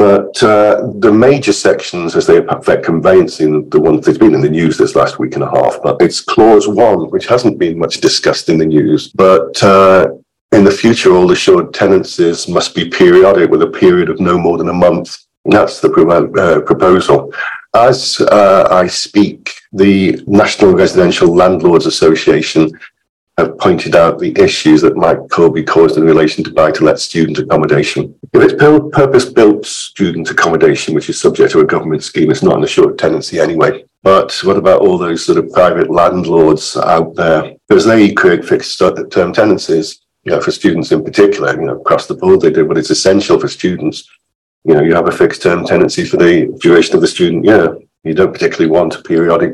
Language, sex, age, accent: English, male, 50-69, British